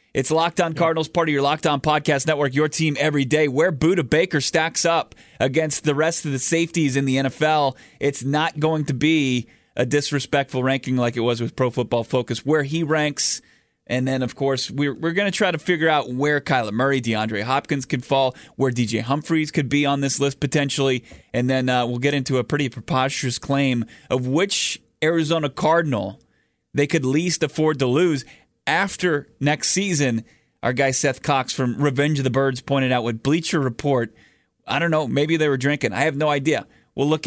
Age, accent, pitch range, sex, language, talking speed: 30-49, American, 130-155 Hz, male, English, 200 wpm